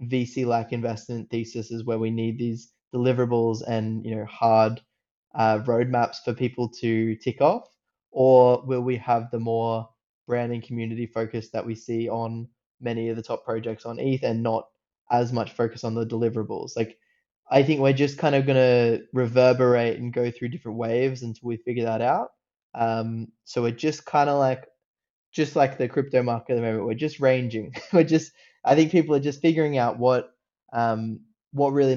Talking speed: 190 wpm